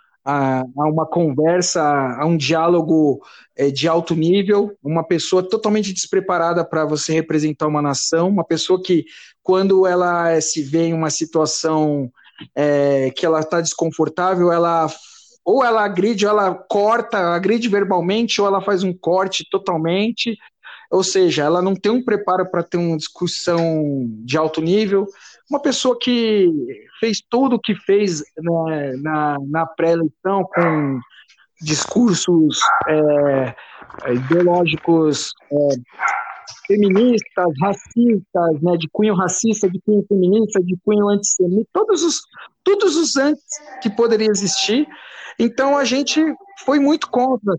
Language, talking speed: Portuguese, 130 wpm